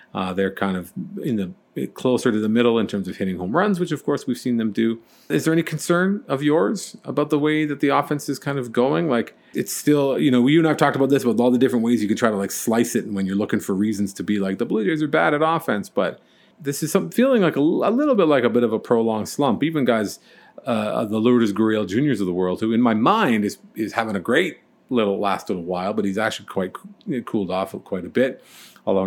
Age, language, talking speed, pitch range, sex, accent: 40-59, English, 265 wpm, 100-140 Hz, male, American